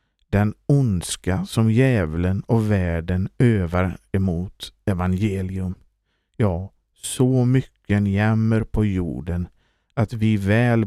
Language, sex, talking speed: Swedish, male, 105 wpm